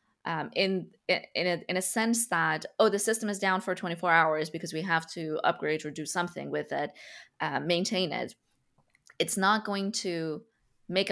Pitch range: 165-200 Hz